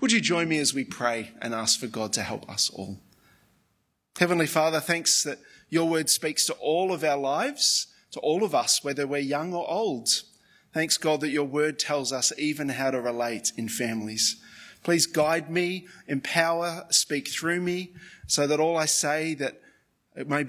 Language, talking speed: English, 185 wpm